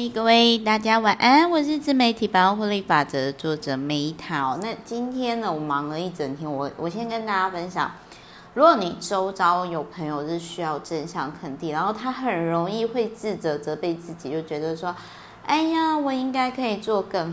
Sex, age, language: female, 30-49, Chinese